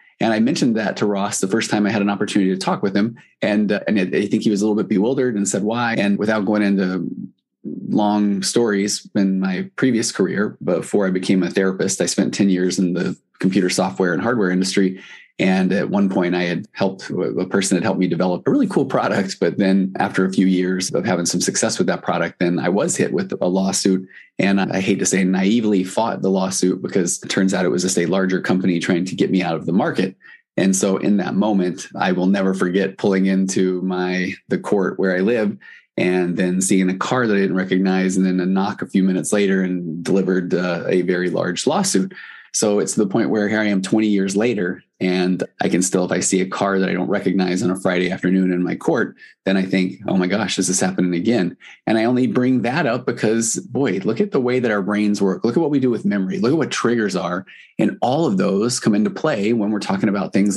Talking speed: 240 wpm